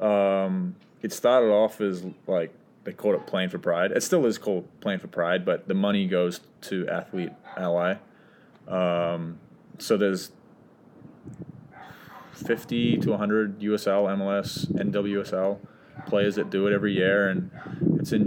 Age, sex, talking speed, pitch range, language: 20-39, male, 145 wpm, 95-105 Hz, English